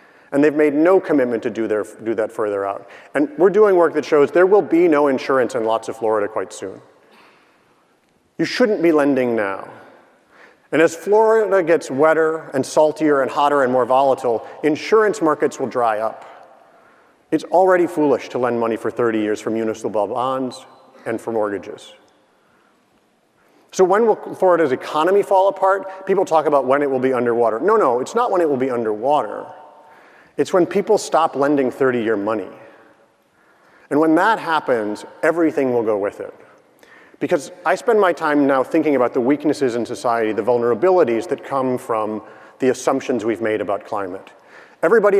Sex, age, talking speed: male, 40-59, 170 wpm